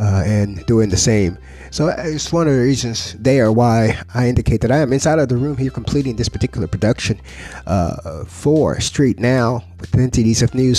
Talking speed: 205 wpm